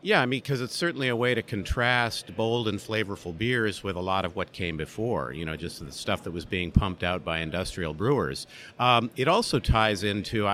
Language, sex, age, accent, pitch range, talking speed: English, male, 50-69, American, 100-130 Hz, 220 wpm